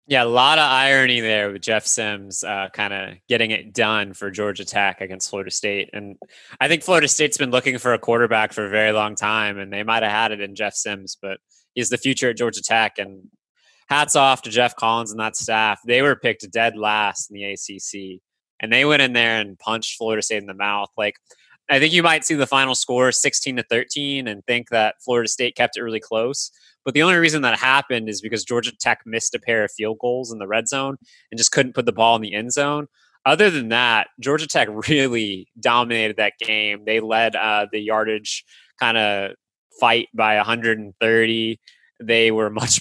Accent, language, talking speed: American, English, 215 wpm